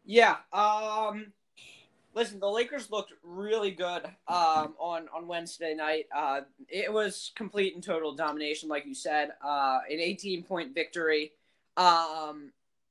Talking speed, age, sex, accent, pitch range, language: 135 wpm, 10-29, male, American, 150-180 Hz, English